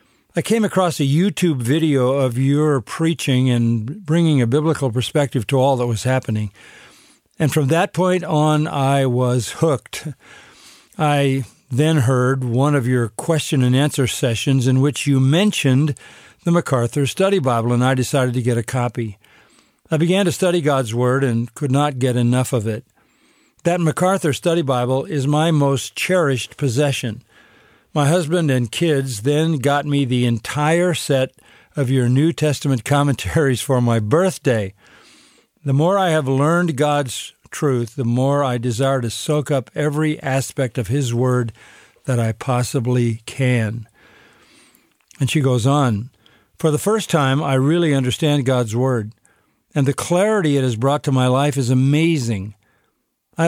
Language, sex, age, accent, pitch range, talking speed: English, male, 50-69, American, 125-155 Hz, 155 wpm